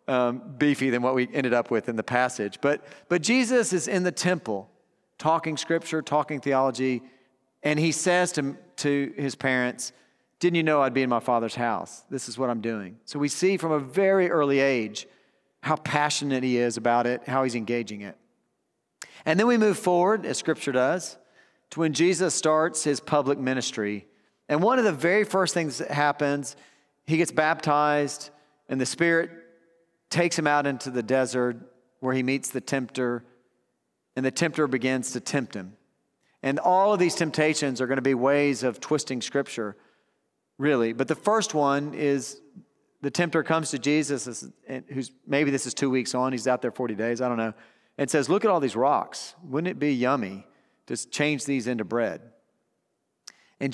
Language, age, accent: English, 40-59, American